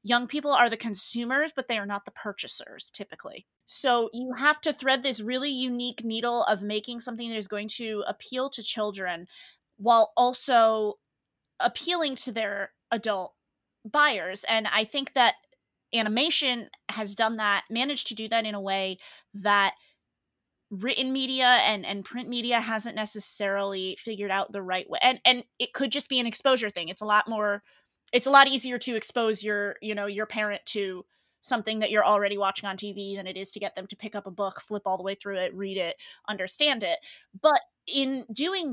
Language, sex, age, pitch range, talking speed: English, female, 20-39, 205-245 Hz, 190 wpm